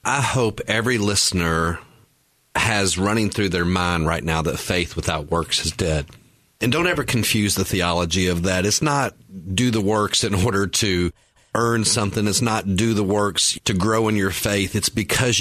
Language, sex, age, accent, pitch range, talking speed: English, male, 40-59, American, 95-115 Hz, 185 wpm